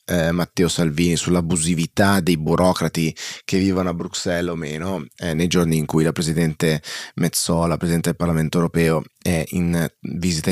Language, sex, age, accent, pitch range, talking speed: Italian, male, 20-39, native, 85-95 Hz, 155 wpm